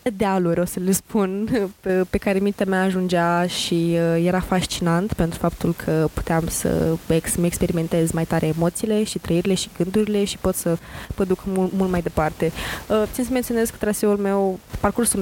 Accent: native